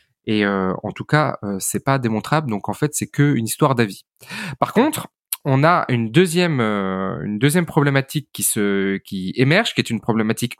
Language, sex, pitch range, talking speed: French, male, 120-170 Hz, 200 wpm